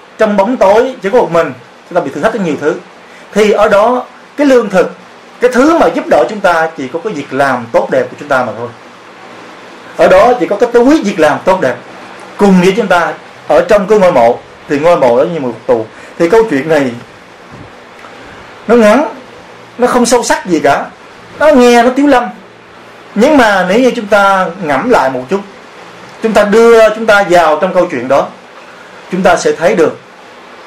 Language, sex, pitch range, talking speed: Vietnamese, male, 140-225 Hz, 210 wpm